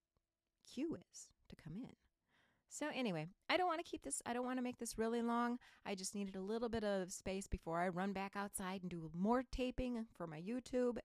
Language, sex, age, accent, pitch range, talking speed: English, female, 30-49, American, 160-220 Hz, 225 wpm